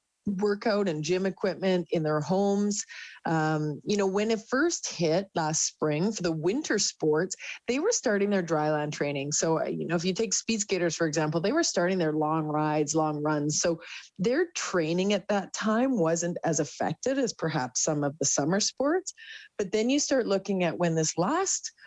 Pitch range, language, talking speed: 160-205 Hz, English, 190 wpm